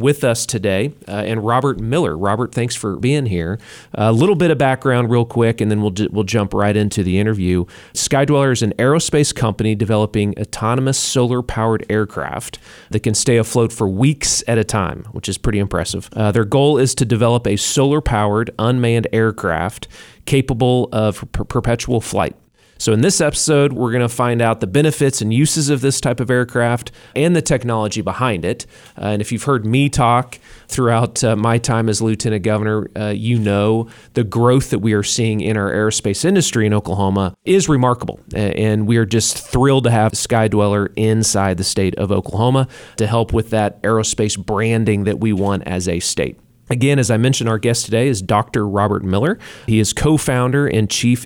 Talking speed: 185 wpm